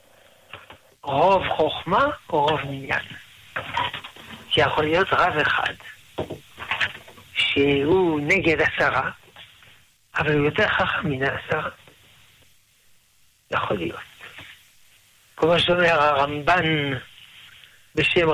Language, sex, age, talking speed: Hebrew, male, 60-79, 80 wpm